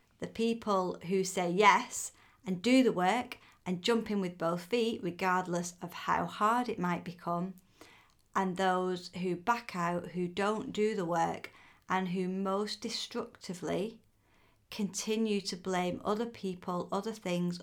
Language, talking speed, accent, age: English, 145 wpm, British, 30-49